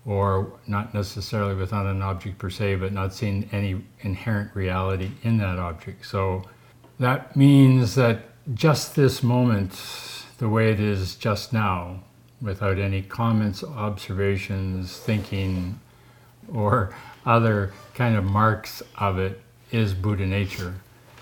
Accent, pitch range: American, 95-115 Hz